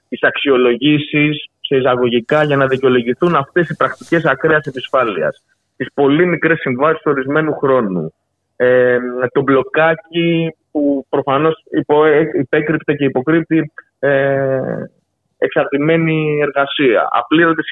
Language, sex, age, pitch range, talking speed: Greek, male, 30-49, 135-180 Hz, 110 wpm